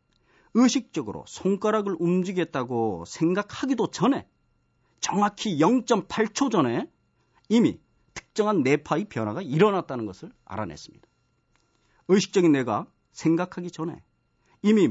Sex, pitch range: male, 150-210 Hz